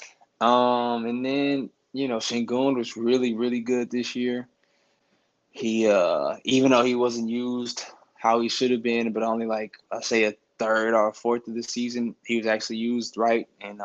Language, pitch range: English, 105-120 Hz